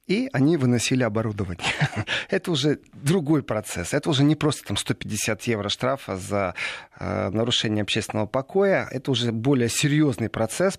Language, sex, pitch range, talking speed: Russian, male, 110-155 Hz, 145 wpm